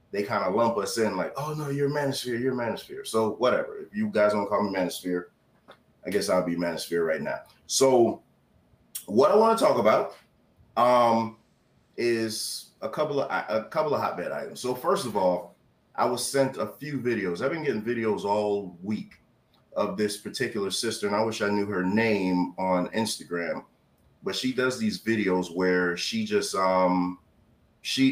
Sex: male